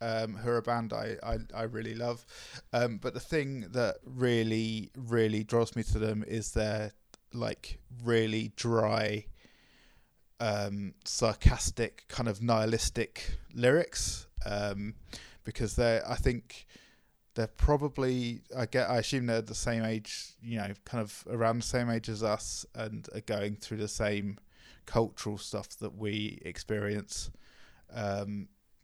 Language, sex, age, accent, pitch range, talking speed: English, male, 20-39, British, 105-125 Hz, 145 wpm